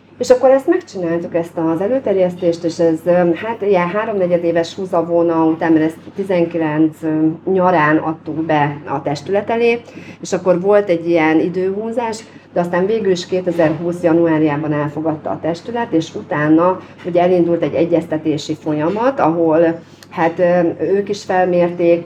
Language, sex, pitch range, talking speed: Hungarian, female, 160-185 Hz, 140 wpm